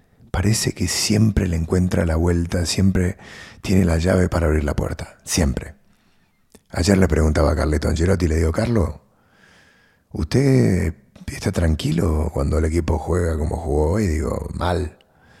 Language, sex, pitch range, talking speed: English, male, 80-95 Hz, 145 wpm